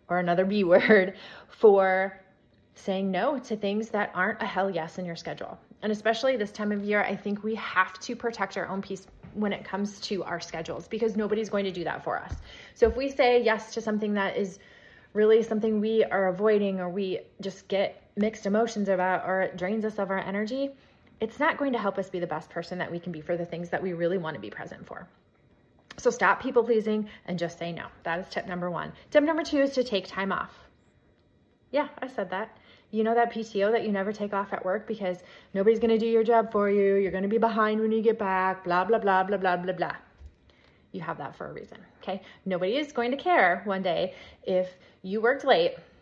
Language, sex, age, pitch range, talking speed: English, female, 30-49, 185-225 Hz, 230 wpm